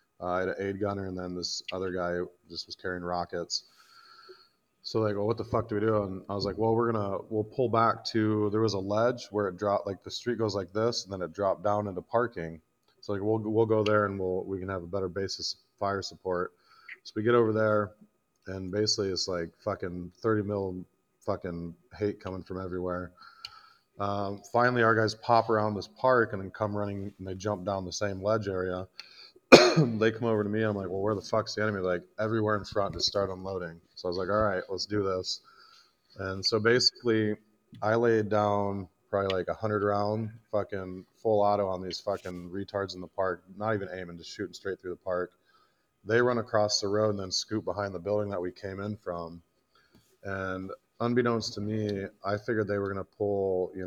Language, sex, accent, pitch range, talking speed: English, male, American, 95-110 Hz, 220 wpm